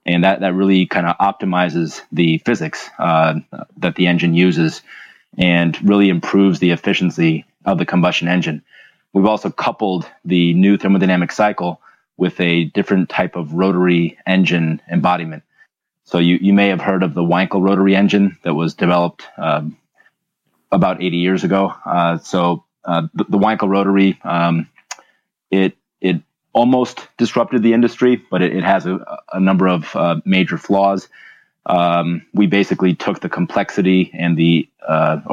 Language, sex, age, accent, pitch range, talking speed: English, male, 30-49, American, 85-95 Hz, 155 wpm